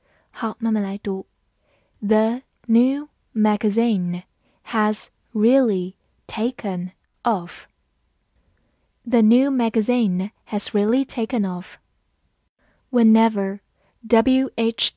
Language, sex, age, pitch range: Chinese, female, 10-29, 200-245 Hz